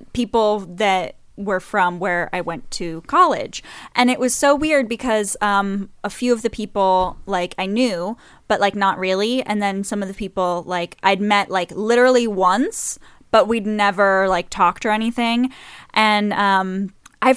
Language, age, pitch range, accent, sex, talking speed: English, 10-29, 190-235 Hz, American, female, 175 wpm